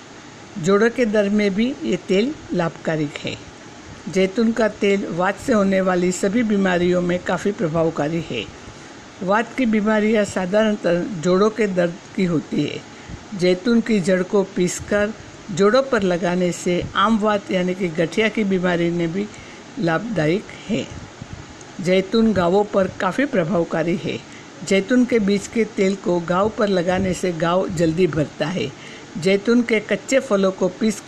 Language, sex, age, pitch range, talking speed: Hindi, female, 60-79, 175-210 Hz, 150 wpm